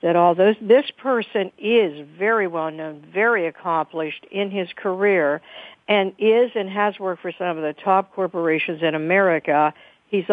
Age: 60-79